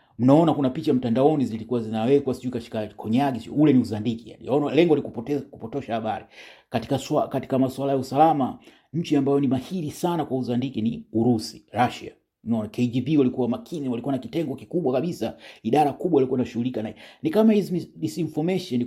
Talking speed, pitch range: 165 wpm, 120-160 Hz